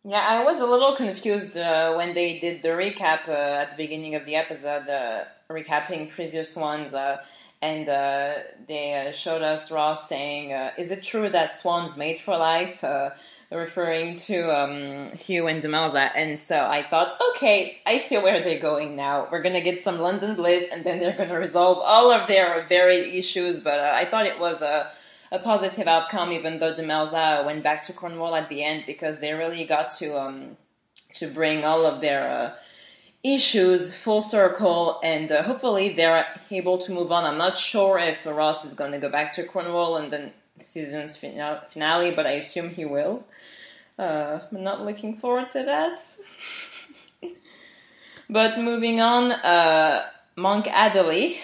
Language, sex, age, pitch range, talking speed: English, female, 20-39, 155-195 Hz, 180 wpm